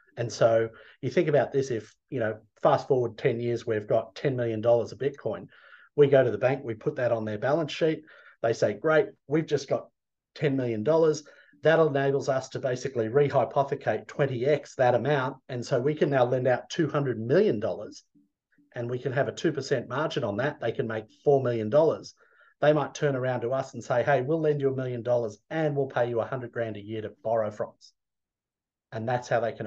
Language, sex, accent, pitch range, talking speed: English, male, Australian, 120-150 Hz, 210 wpm